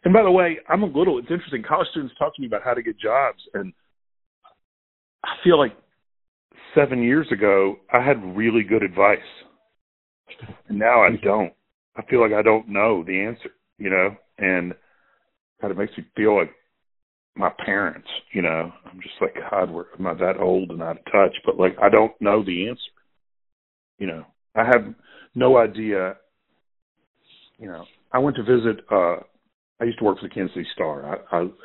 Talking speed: 190 wpm